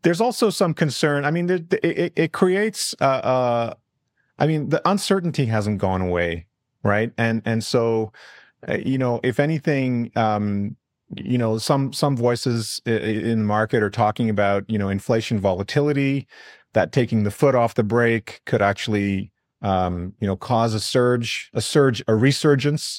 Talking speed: 165 wpm